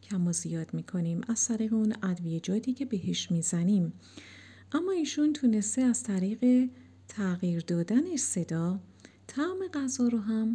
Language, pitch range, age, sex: Persian, 175-245 Hz, 50-69, female